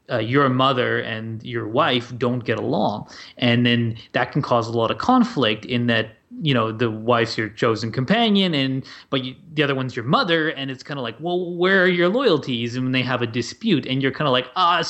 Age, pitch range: 20-39, 120-150 Hz